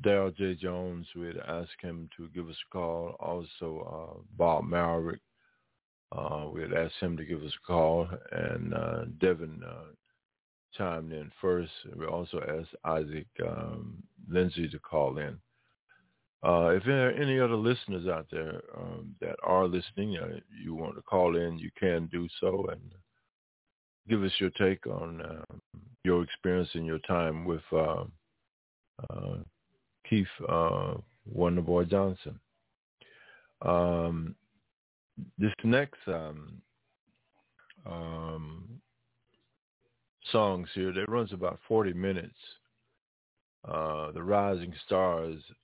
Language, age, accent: English, 50-69, American